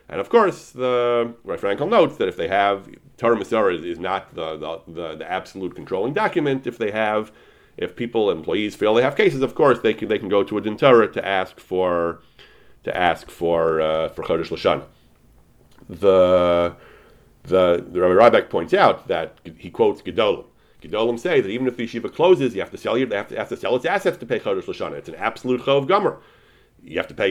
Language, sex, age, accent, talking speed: English, male, 40-59, American, 210 wpm